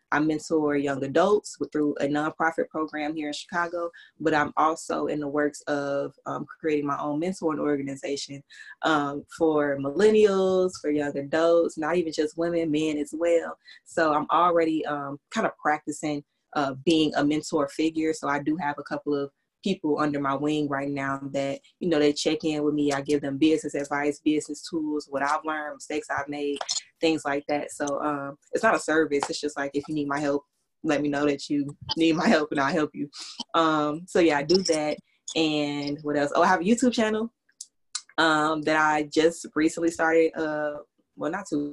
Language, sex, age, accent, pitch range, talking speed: English, female, 20-39, American, 145-160 Hz, 195 wpm